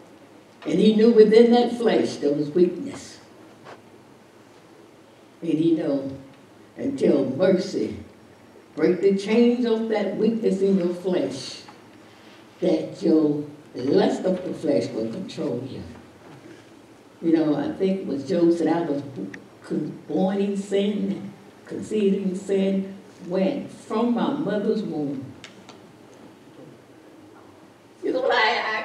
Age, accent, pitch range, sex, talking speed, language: 60-79, American, 150-220 Hz, female, 110 wpm, English